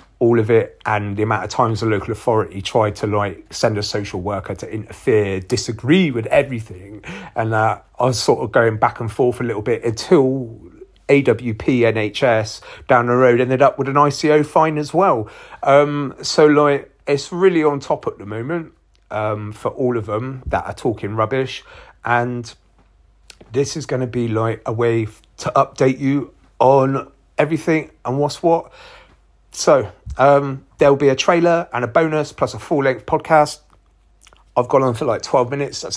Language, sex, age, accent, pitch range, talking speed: English, male, 30-49, British, 105-130 Hz, 180 wpm